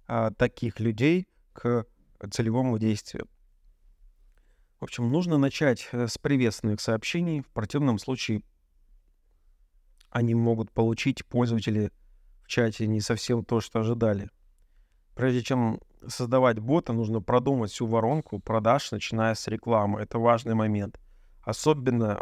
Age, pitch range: 30-49, 105-125 Hz